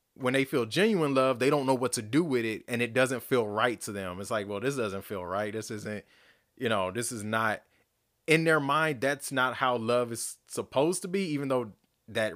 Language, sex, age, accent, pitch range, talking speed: English, male, 20-39, American, 105-130 Hz, 235 wpm